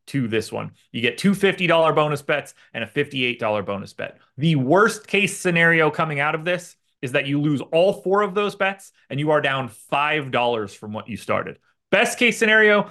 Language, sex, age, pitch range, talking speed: English, male, 30-49, 120-170 Hz, 200 wpm